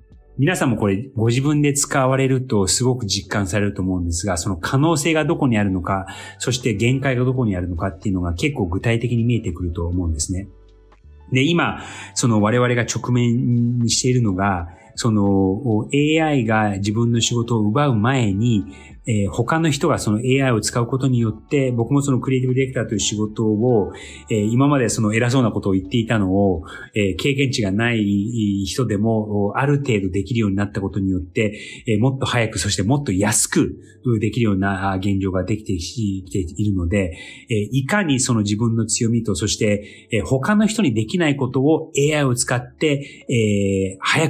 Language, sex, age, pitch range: Japanese, male, 30-49, 100-130 Hz